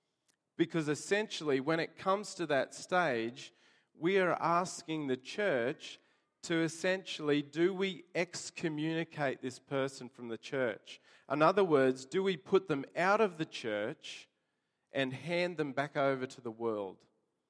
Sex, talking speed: male, 145 wpm